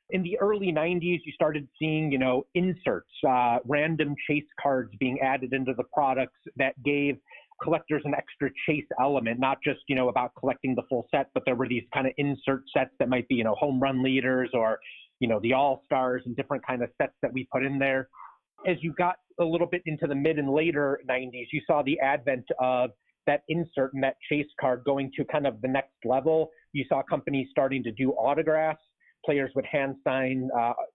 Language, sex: English, male